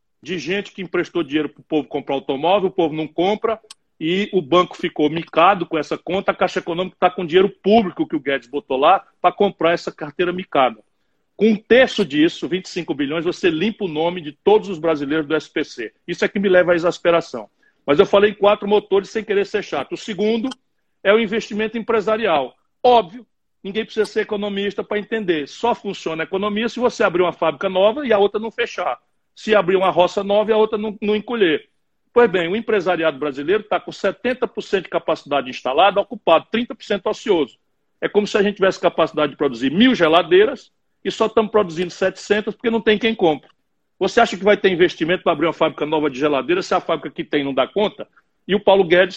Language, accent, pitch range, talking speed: Italian, Brazilian, 165-215 Hz, 205 wpm